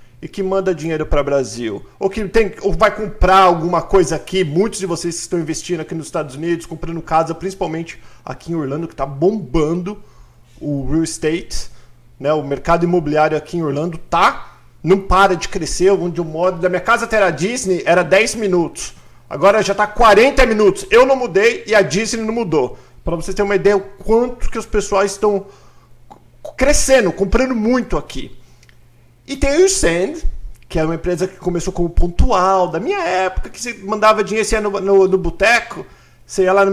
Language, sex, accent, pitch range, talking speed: Portuguese, male, Brazilian, 155-205 Hz, 195 wpm